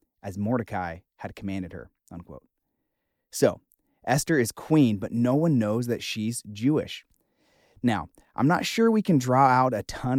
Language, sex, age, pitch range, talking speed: English, male, 30-49, 100-125 Hz, 155 wpm